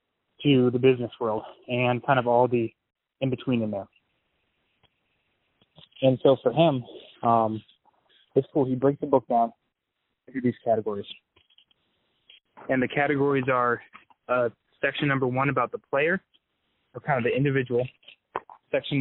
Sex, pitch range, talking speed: male, 120-135 Hz, 140 wpm